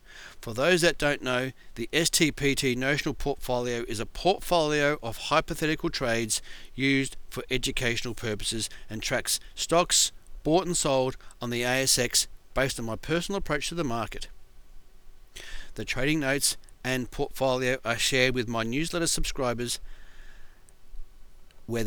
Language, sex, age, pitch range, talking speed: English, male, 40-59, 110-140 Hz, 130 wpm